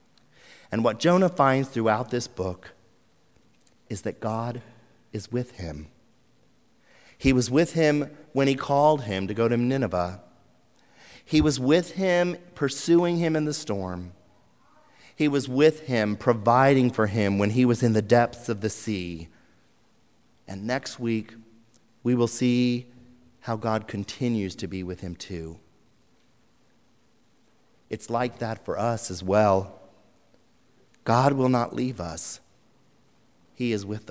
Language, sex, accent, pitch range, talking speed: English, male, American, 105-135 Hz, 140 wpm